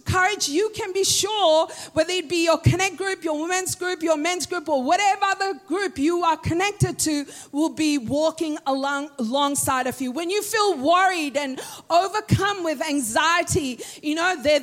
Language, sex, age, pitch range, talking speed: English, female, 40-59, 305-380 Hz, 175 wpm